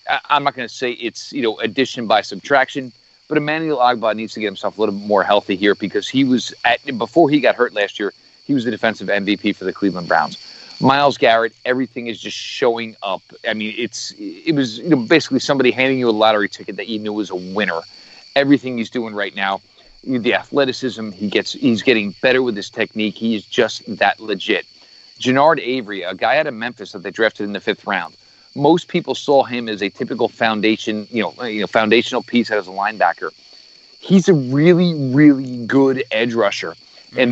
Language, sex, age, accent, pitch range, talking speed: English, male, 40-59, American, 110-140 Hz, 205 wpm